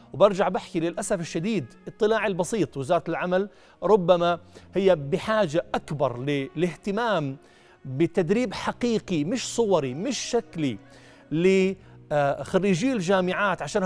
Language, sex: Arabic, male